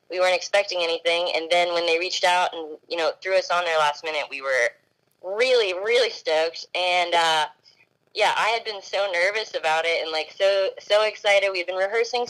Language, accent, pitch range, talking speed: English, American, 170-215 Hz, 210 wpm